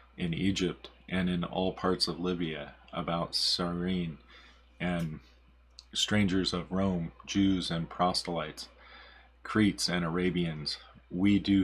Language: English